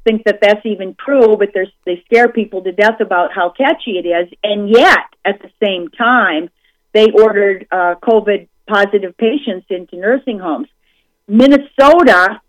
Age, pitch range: 50-69, 200-255 Hz